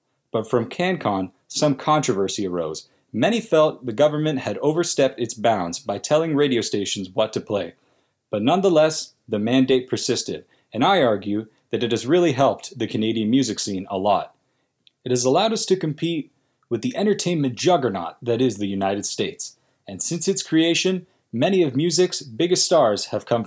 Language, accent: English, American